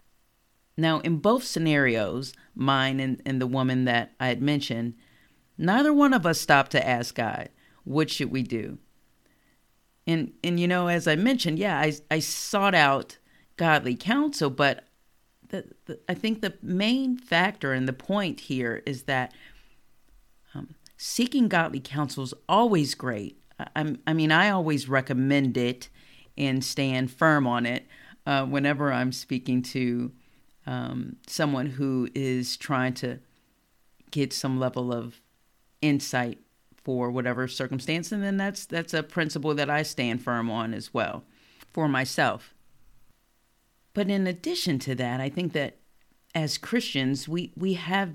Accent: American